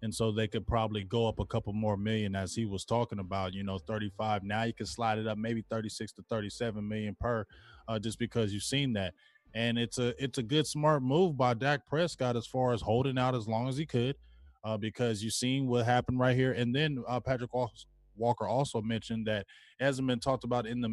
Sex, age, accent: male, 20-39, American